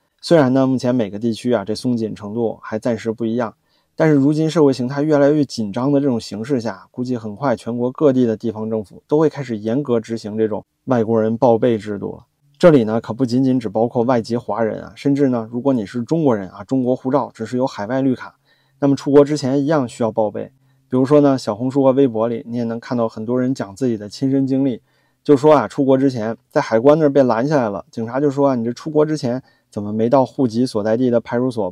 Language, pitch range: Chinese, 110-135 Hz